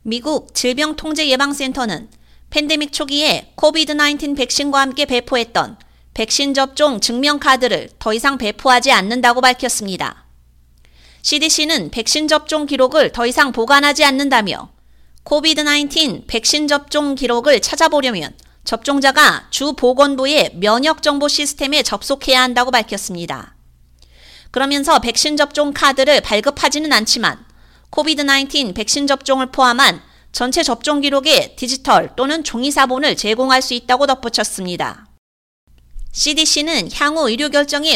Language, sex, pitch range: Korean, female, 235-295 Hz